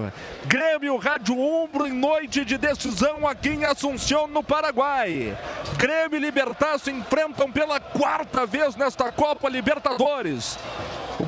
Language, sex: Portuguese, male